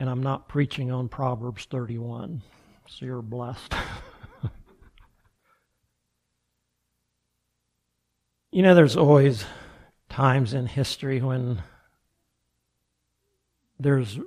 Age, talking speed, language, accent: 60-79, 80 wpm, English, American